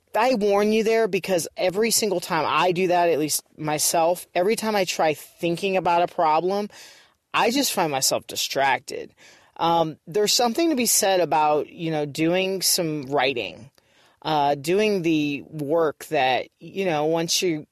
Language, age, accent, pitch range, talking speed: English, 30-49, American, 150-190 Hz, 165 wpm